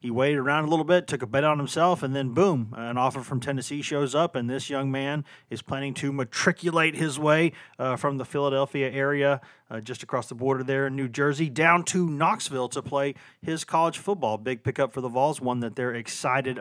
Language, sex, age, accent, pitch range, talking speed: English, male, 40-59, American, 120-150 Hz, 220 wpm